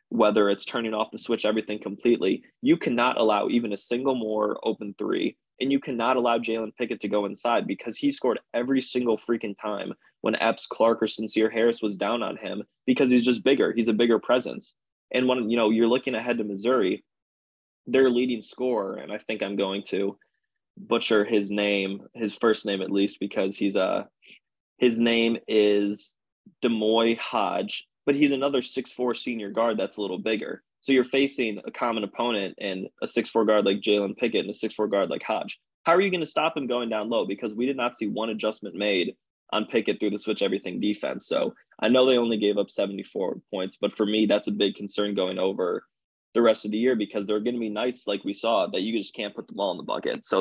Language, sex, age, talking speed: English, male, 20-39, 220 wpm